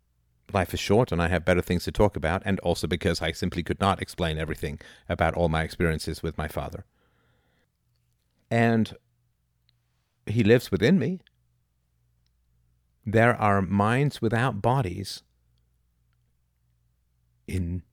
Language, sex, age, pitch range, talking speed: English, male, 50-69, 75-105 Hz, 125 wpm